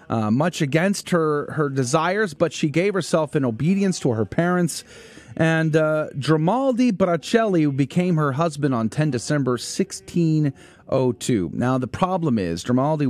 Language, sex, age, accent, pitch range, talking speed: English, male, 30-49, American, 130-190 Hz, 140 wpm